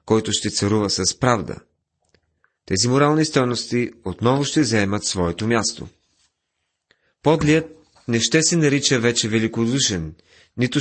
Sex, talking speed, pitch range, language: male, 115 wpm, 95-125 Hz, Bulgarian